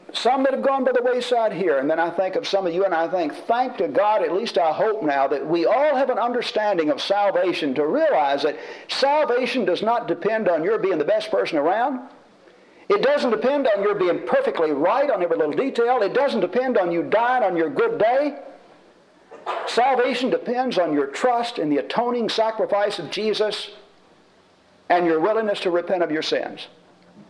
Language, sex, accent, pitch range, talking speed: English, male, American, 170-255 Hz, 200 wpm